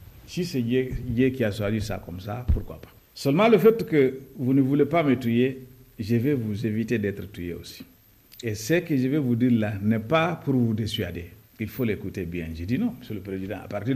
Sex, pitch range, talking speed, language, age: male, 110-140 Hz, 230 wpm, French, 50-69